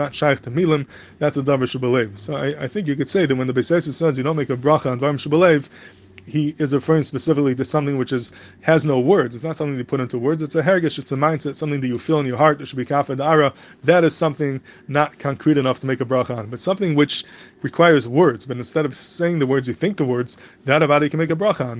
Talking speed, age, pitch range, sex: 260 wpm, 20-39, 130-155 Hz, male